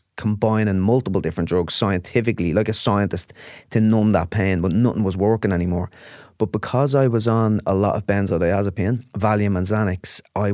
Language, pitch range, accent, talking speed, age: English, 90-110 Hz, Irish, 170 wpm, 30-49